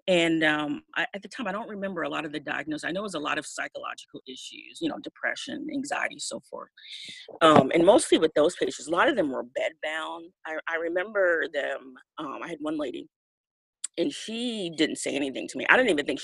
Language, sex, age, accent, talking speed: English, female, 30-49, American, 225 wpm